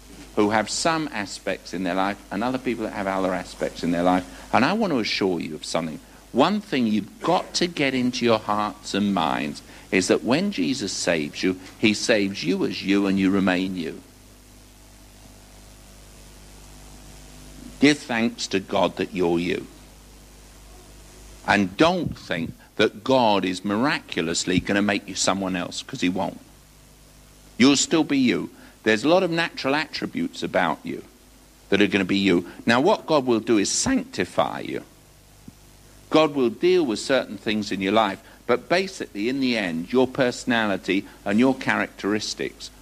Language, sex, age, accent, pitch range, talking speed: English, male, 60-79, British, 100-135 Hz, 165 wpm